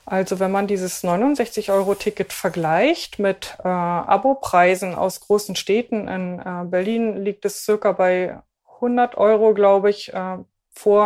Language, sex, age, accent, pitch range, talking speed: German, female, 20-39, German, 180-215 Hz, 135 wpm